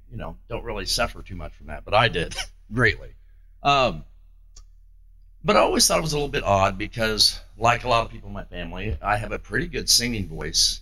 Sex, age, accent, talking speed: male, 50-69, American, 220 wpm